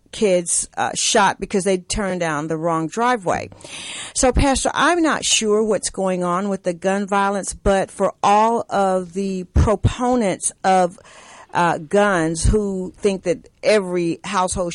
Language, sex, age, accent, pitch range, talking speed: English, female, 50-69, American, 185-225 Hz, 145 wpm